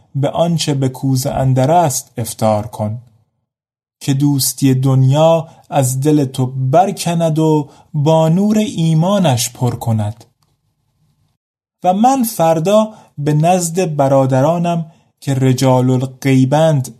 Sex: male